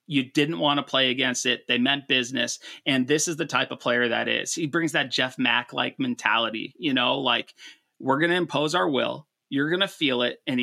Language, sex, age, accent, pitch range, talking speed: English, male, 30-49, American, 130-160 Hz, 230 wpm